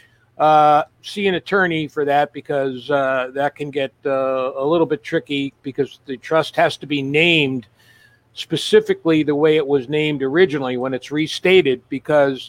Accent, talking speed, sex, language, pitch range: American, 165 wpm, male, English, 130-185 Hz